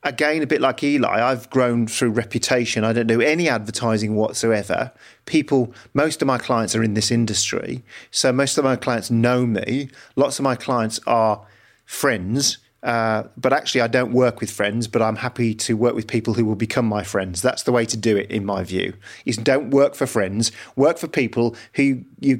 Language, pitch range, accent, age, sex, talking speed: English, 110-140 Hz, British, 40-59, male, 205 wpm